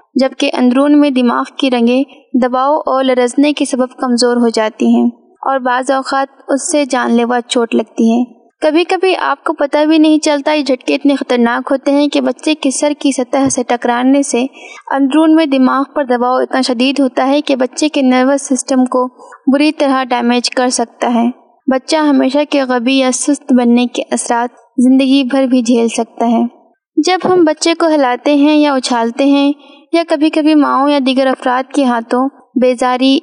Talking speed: 185 wpm